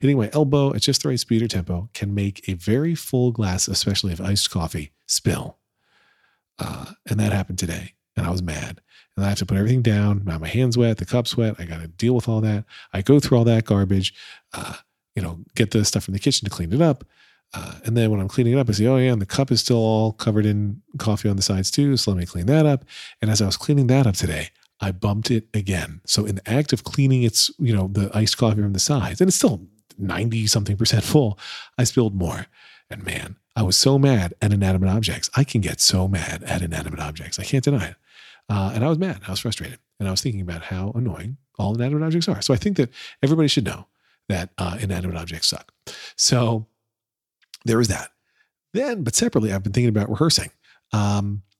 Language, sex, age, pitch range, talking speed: English, male, 40-59, 95-125 Hz, 235 wpm